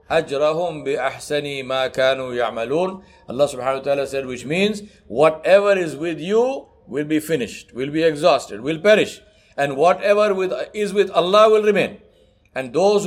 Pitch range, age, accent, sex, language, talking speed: 130-180 Hz, 60-79, Indian, male, English, 150 wpm